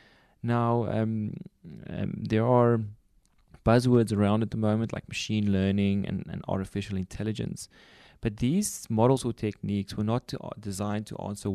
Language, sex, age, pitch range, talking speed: English, male, 20-39, 100-120 Hz, 150 wpm